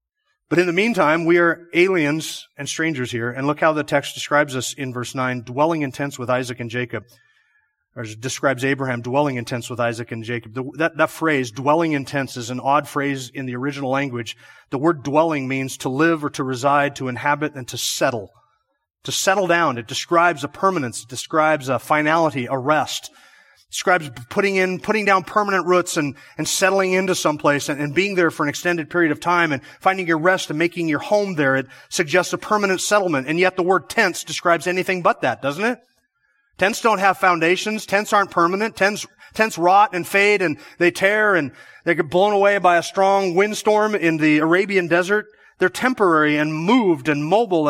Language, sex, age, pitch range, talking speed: English, male, 30-49, 140-195 Hz, 200 wpm